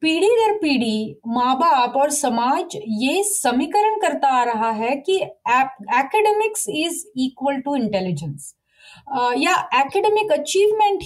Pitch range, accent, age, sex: 240-335 Hz, native, 30-49, female